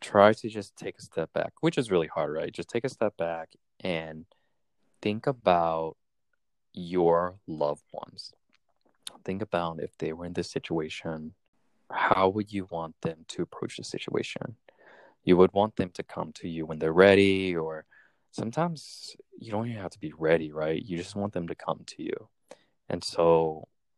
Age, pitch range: 20-39, 85-105 Hz